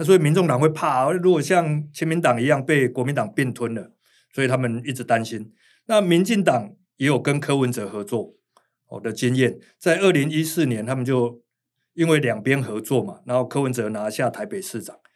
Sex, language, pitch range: male, Chinese, 120-155 Hz